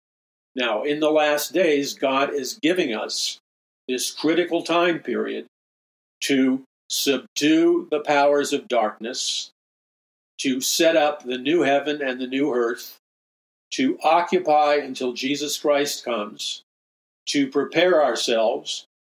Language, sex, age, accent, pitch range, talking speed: English, male, 50-69, American, 130-155 Hz, 120 wpm